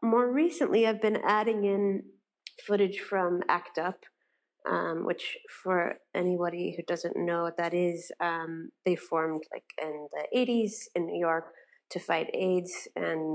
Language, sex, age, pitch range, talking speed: English, female, 30-49, 165-200 Hz, 155 wpm